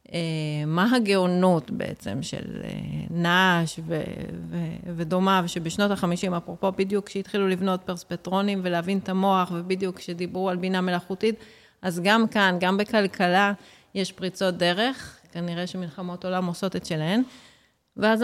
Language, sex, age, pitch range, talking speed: Hebrew, female, 30-49, 175-220 Hz, 130 wpm